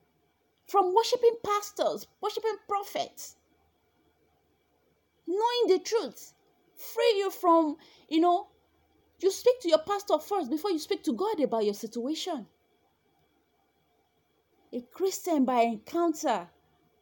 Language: English